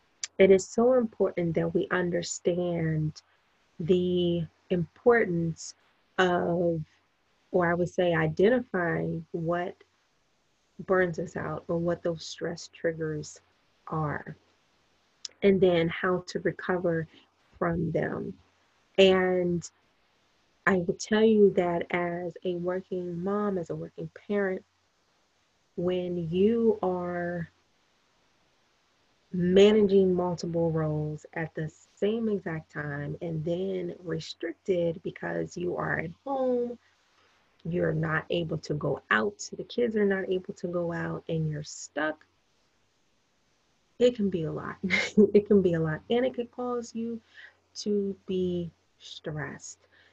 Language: English